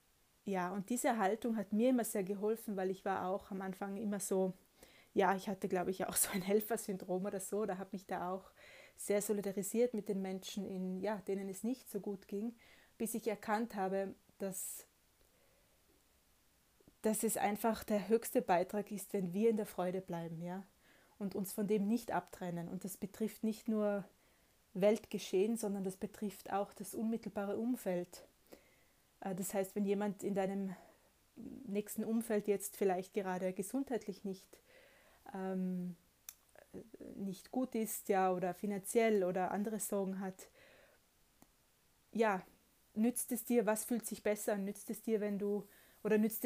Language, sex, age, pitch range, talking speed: German, female, 20-39, 190-215 Hz, 160 wpm